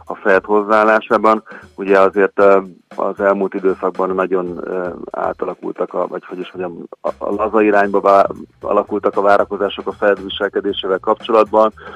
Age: 40-59